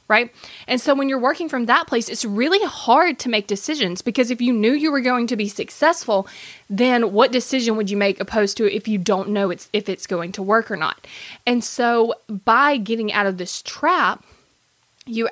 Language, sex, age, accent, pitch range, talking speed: English, female, 20-39, American, 205-260 Hz, 210 wpm